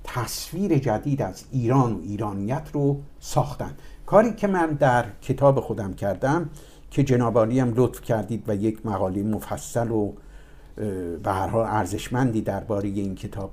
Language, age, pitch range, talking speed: Persian, 50-69, 105-150 Hz, 130 wpm